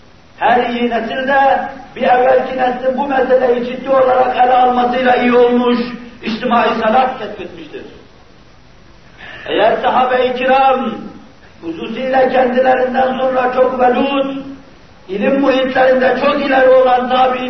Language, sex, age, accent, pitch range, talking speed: Turkish, male, 50-69, native, 240-260 Hz, 105 wpm